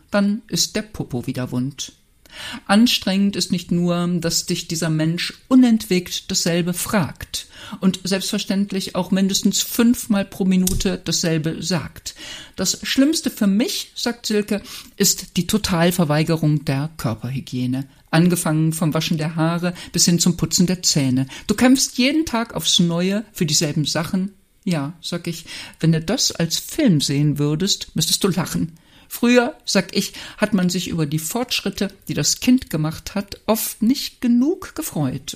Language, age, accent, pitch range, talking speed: German, 50-69, German, 160-205 Hz, 150 wpm